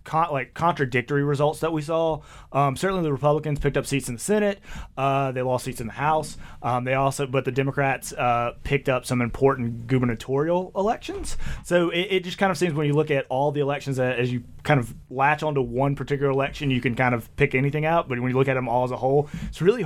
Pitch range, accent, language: 125-150 Hz, American, English